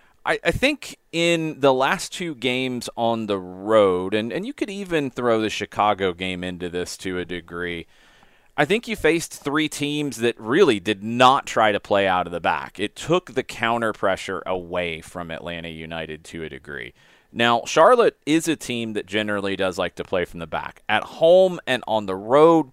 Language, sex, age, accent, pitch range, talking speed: English, male, 30-49, American, 90-130 Hz, 195 wpm